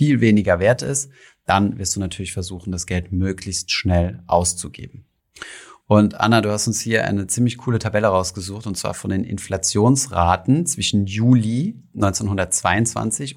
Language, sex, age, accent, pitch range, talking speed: German, male, 30-49, German, 95-120 Hz, 150 wpm